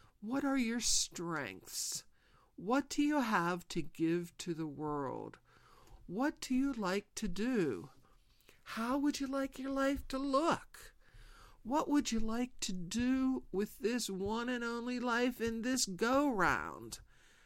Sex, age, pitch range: male, 50-69, 165-245 Hz